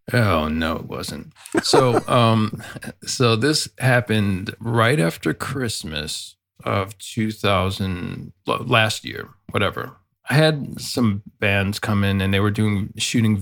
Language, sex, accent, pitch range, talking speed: English, male, American, 95-120 Hz, 125 wpm